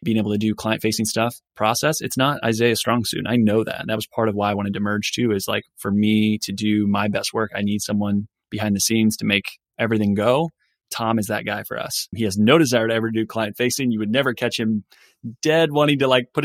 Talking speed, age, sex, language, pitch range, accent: 260 wpm, 20-39, male, English, 105-120 Hz, American